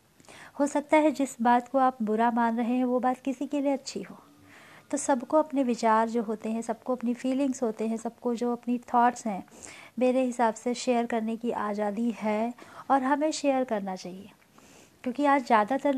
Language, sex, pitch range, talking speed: Hindi, female, 215-250 Hz, 190 wpm